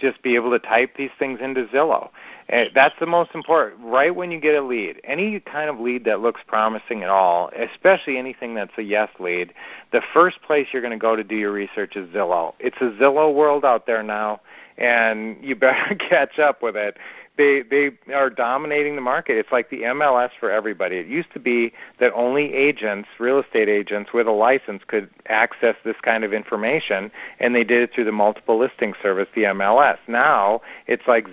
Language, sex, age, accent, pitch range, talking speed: English, male, 40-59, American, 110-135 Hz, 205 wpm